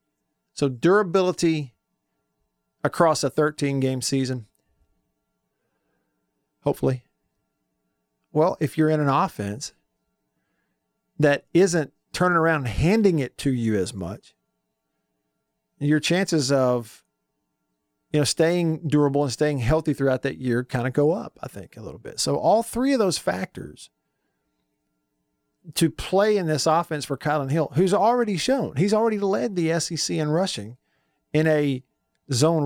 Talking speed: 135 wpm